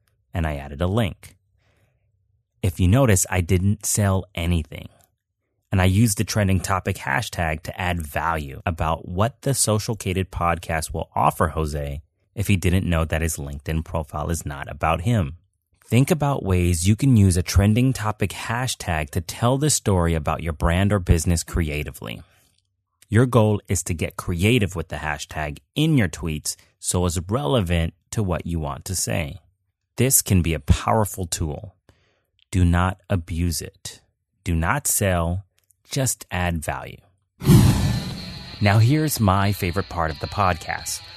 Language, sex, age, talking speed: English, male, 30-49, 155 wpm